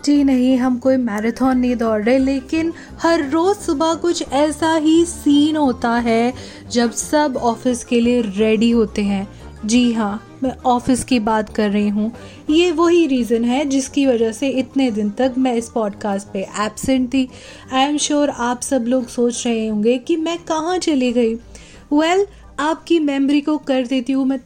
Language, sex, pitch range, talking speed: Hindi, female, 240-305 Hz, 180 wpm